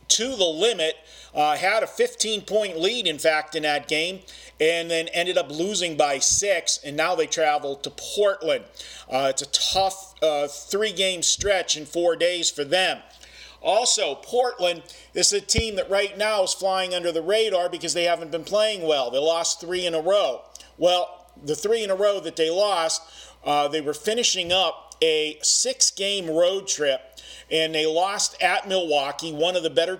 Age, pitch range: 40-59, 155-190 Hz